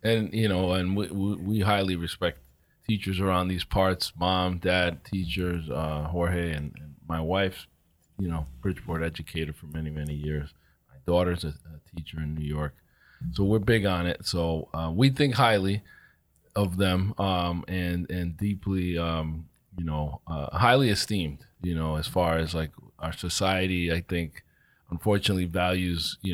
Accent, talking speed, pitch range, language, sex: American, 165 wpm, 80-100 Hz, English, male